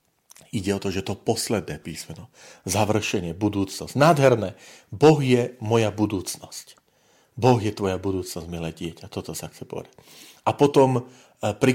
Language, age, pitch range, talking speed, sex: Slovak, 40-59, 95-115 Hz, 140 wpm, male